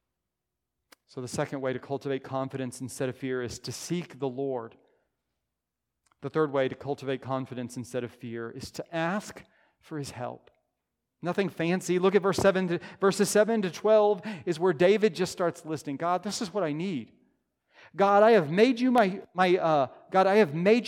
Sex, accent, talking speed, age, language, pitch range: male, American, 185 wpm, 40-59, English, 135-190 Hz